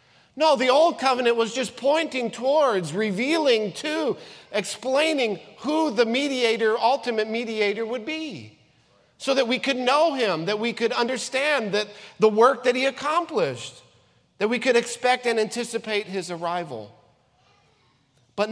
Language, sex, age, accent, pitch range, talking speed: English, male, 40-59, American, 165-245 Hz, 140 wpm